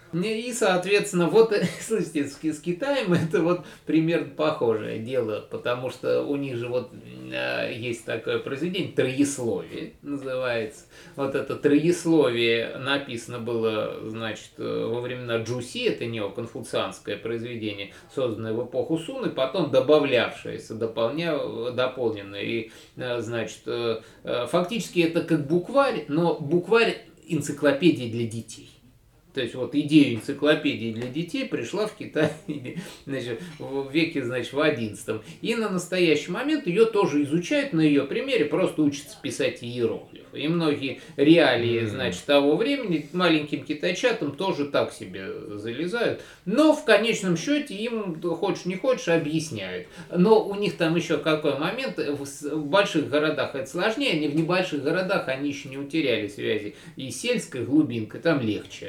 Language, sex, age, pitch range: Russian, male, 20-39, 120-175 Hz